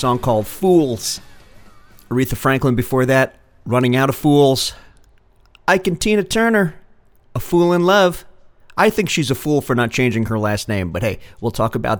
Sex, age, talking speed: male, 40-59, 175 wpm